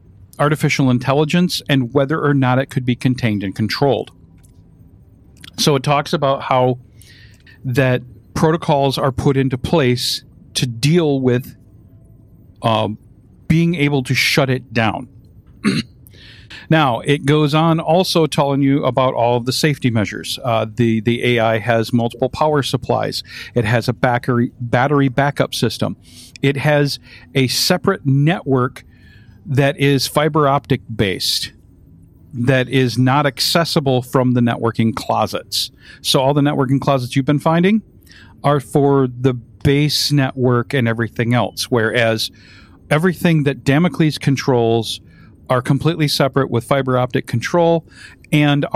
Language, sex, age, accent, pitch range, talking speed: English, male, 50-69, American, 115-145 Hz, 130 wpm